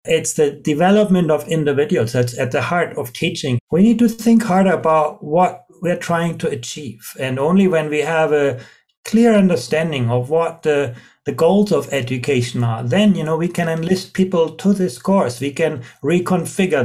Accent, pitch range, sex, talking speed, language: German, 140-180 Hz, male, 180 wpm, English